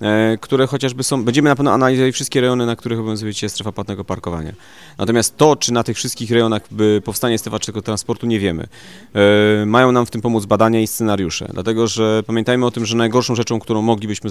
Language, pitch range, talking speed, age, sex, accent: Polish, 105-125 Hz, 195 wpm, 30-49, male, native